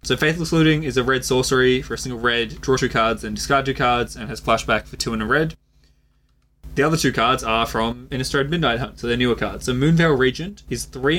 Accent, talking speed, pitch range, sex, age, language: Australian, 235 wpm, 115-140 Hz, male, 20-39, English